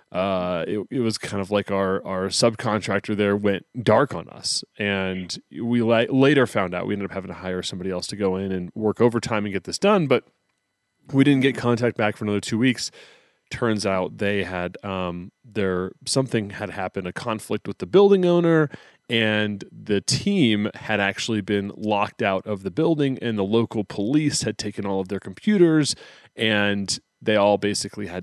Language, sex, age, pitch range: English, male, 30-49, 100-135 Hz